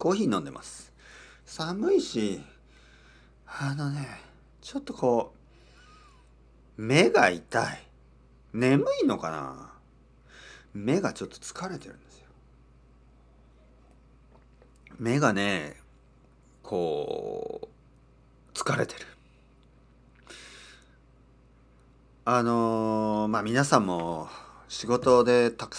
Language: Japanese